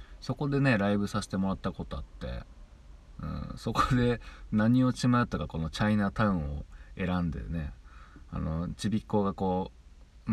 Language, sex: Japanese, male